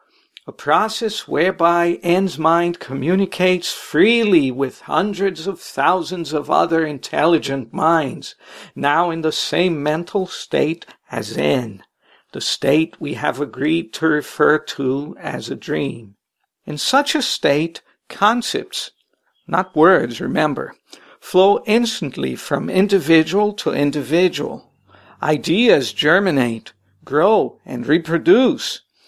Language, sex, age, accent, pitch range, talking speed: English, male, 60-79, American, 155-195 Hz, 110 wpm